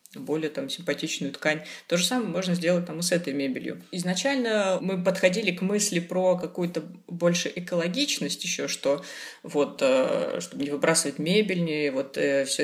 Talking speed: 155 wpm